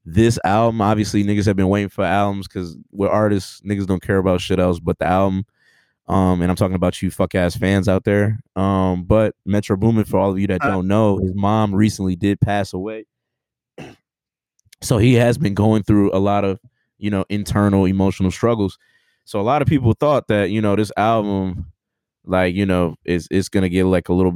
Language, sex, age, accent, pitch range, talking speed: English, male, 20-39, American, 90-110 Hz, 205 wpm